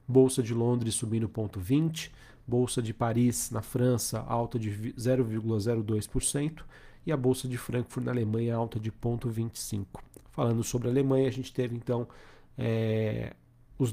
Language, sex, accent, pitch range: Portuguese, male, Brazilian, 115-130 Hz